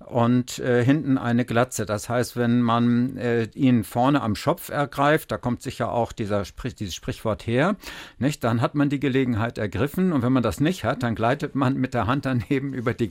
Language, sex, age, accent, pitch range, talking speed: German, male, 60-79, German, 120-140 Hz, 210 wpm